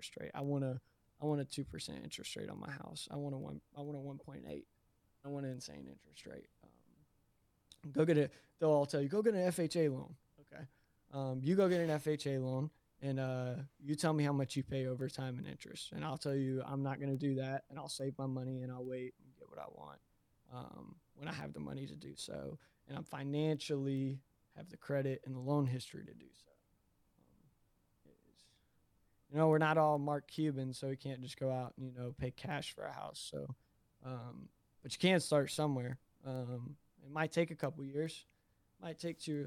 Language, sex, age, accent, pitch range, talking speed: English, male, 20-39, American, 130-150 Hz, 225 wpm